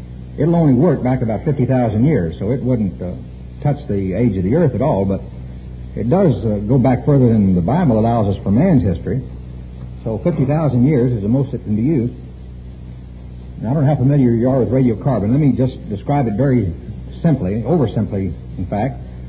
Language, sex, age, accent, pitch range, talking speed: English, male, 60-79, American, 90-145 Hz, 200 wpm